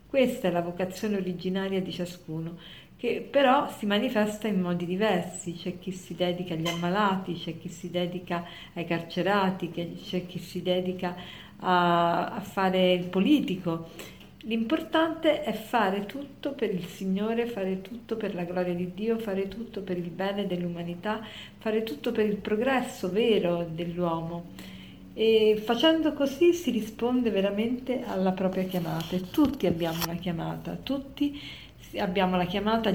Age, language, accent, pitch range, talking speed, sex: 50-69, Italian, native, 180-225 Hz, 140 wpm, female